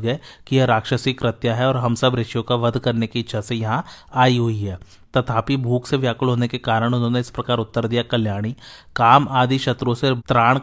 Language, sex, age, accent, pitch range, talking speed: Hindi, male, 30-49, native, 115-130 Hz, 200 wpm